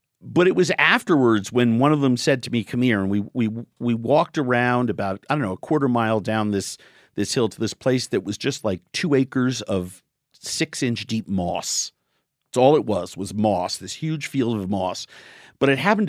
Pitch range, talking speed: 110-150 Hz, 215 wpm